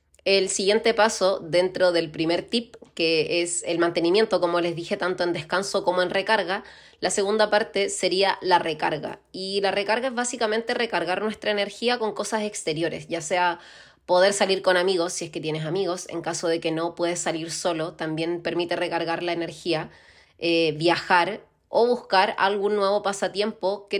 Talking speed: 175 wpm